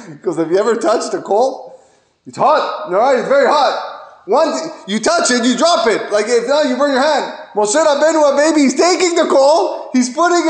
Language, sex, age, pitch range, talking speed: English, male, 20-39, 210-305 Hz, 215 wpm